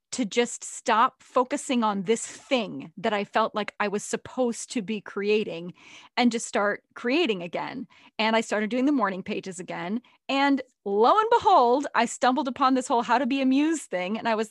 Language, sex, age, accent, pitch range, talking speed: English, female, 20-39, American, 210-275 Hz, 195 wpm